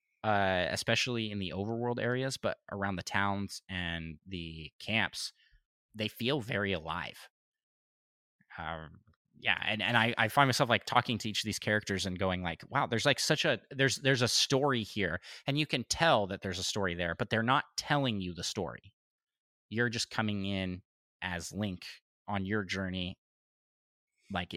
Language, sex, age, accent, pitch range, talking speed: English, male, 20-39, American, 95-115 Hz, 175 wpm